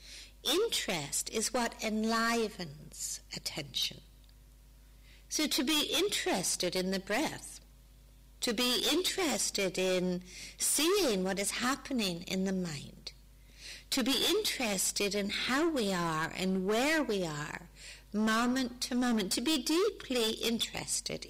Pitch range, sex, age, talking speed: 170-240 Hz, female, 60-79, 115 wpm